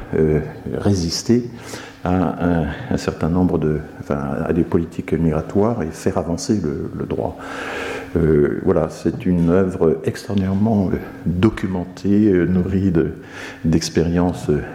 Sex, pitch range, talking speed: male, 80-100 Hz, 120 wpm